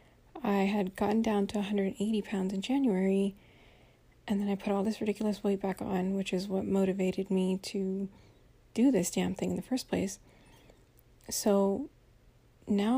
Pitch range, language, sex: 195-235 Hz, English, female